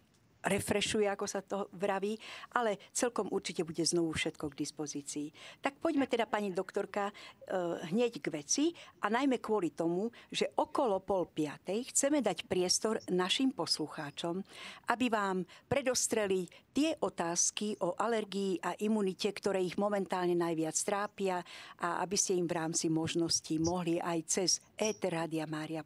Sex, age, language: female, 50-69, Slovak